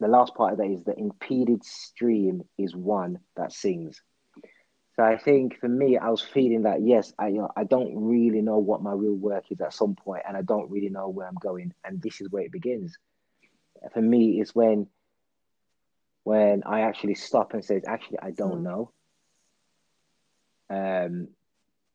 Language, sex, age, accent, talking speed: English, male, 20-39, British, 185 wpm